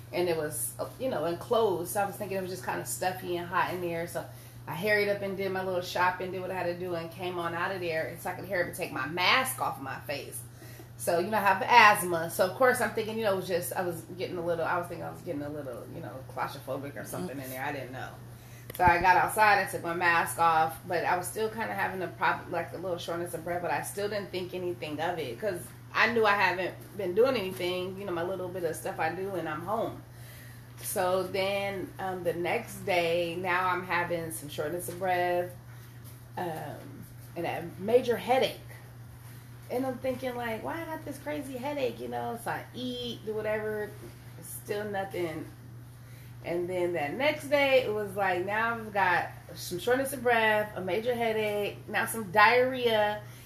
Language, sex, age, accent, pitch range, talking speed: English, female, 30-49, American, 140-205 Hz, 225 wpm